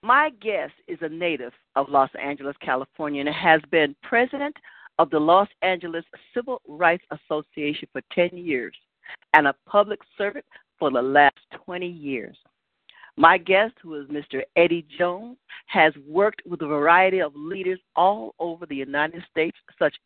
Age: 50-69